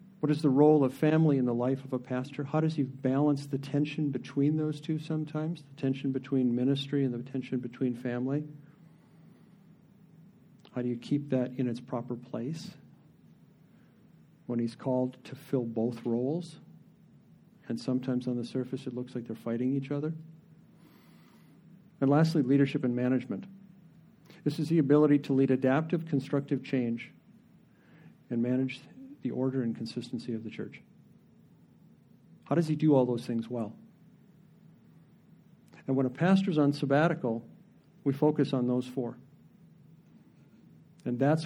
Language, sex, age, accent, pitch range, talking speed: English, male, 50-69, American, 125-155 Hz, 150 wpm